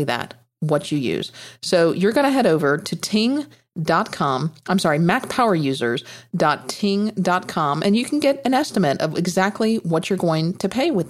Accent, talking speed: American, 155 wpm